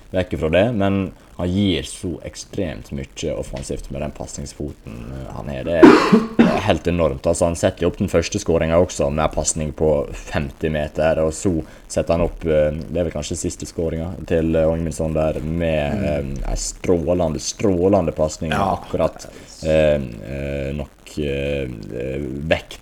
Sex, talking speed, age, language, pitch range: male, 145 wpm, 20-39, English, 75-85 Hz